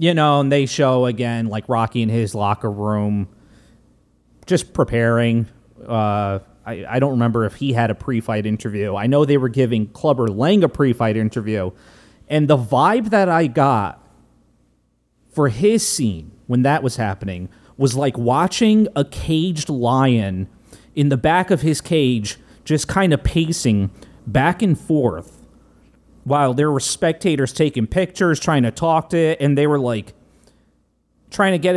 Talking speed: 160 wpm